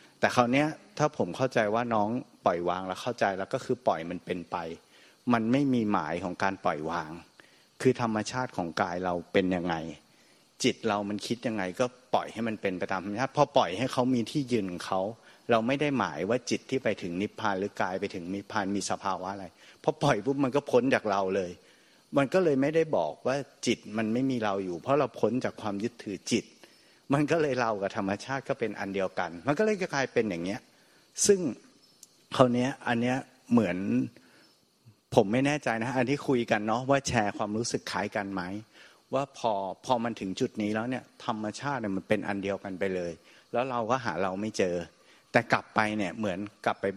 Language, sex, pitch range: Thai, male, 100-130 Hz